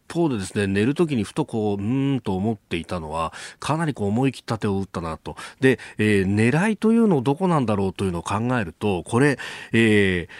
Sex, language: male, Japanese